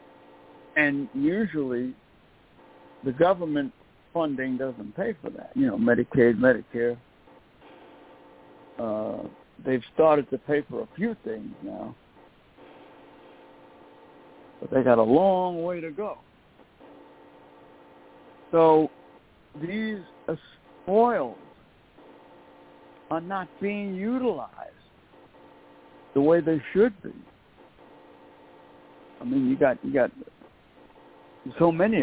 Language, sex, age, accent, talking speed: English, male, 60-79, American, 95 wpm